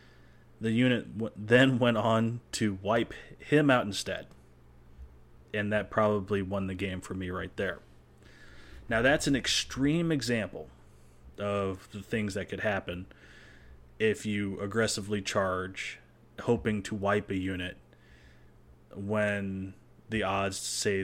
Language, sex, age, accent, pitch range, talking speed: English, male, 30-49, American, 70-110 Hz, 125 wpm